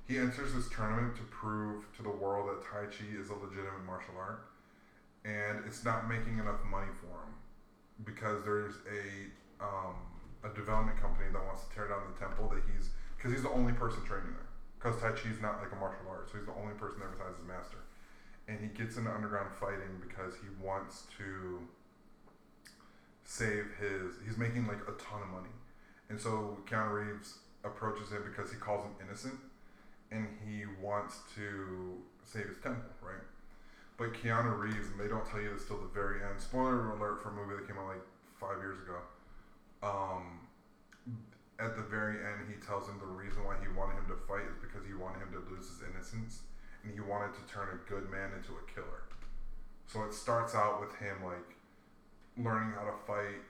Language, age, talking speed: English, 20-39, 195 wpm